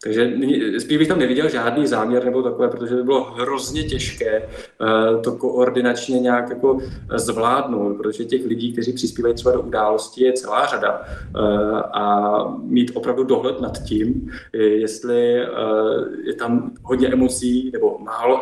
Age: 20-39